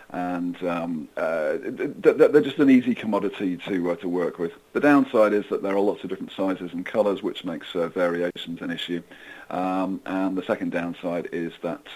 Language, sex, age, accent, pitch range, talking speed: English, male, 40-59, British, 95-135 Hz, 195 wpm